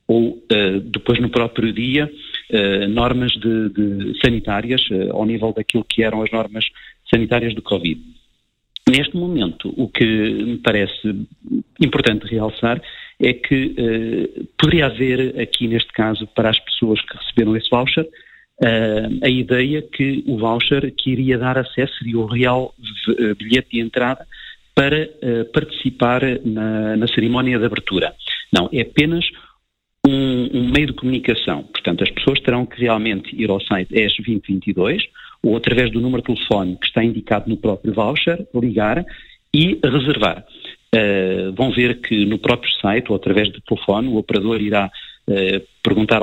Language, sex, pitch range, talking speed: Portuguese, male, 110-130 Hz, 145 wpm